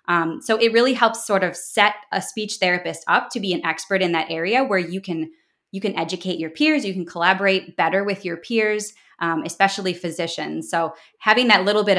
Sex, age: female, 20-39